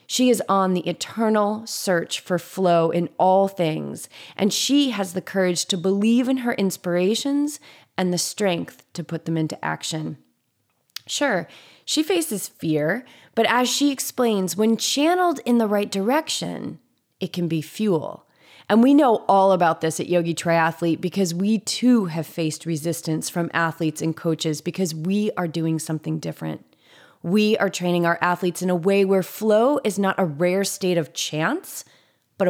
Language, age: English, 30-49